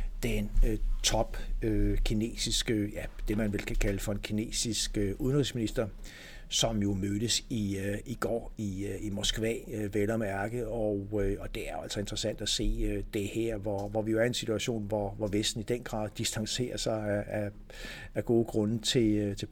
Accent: native